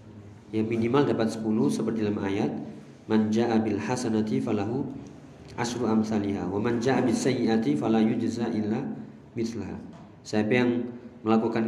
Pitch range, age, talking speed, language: 110-130 Hz, 40-59, 125 wpm, Indonesian